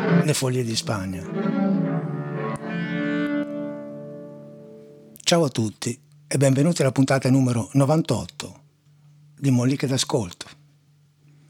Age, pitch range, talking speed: 60-79, 105-150 Hz, 85 wpm